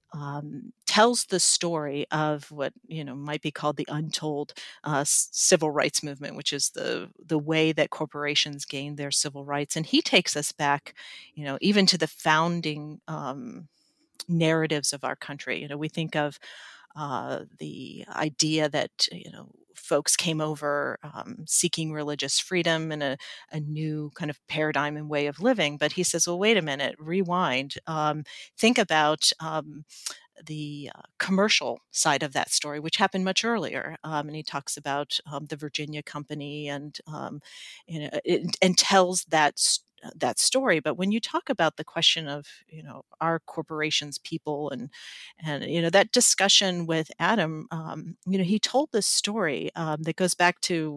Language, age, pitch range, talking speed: English, 40-59, 150-180 Hz, 175 wpm